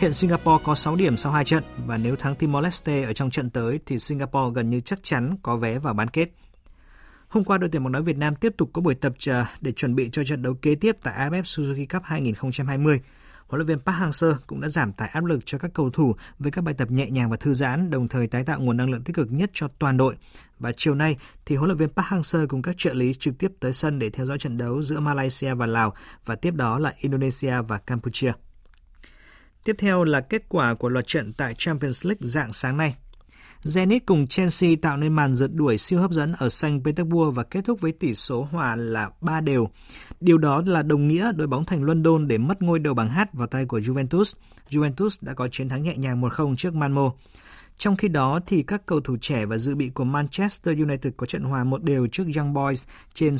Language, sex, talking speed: Vietnamese, male, 245 wpm